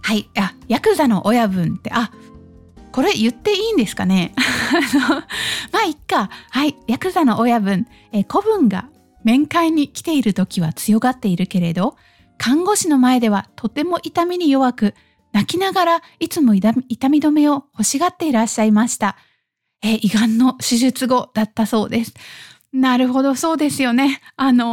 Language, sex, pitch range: Japanese, female, 210-275 Hz